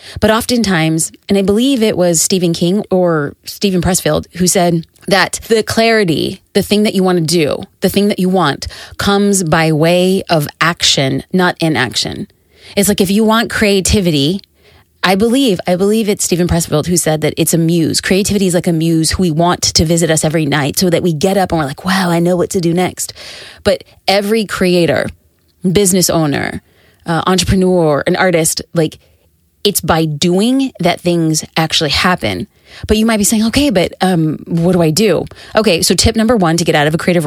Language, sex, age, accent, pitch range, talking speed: English, female, 30-49, American, 160-200 Hz, 200 wpm